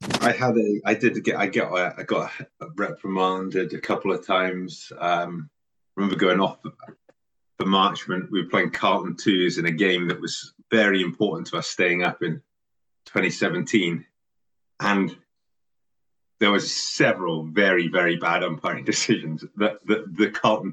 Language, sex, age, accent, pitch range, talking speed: English, male, 30-49, British, 85-105 Hz, 155 wpm